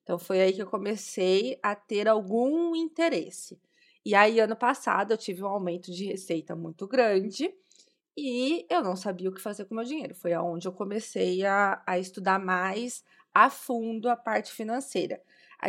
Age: 20-39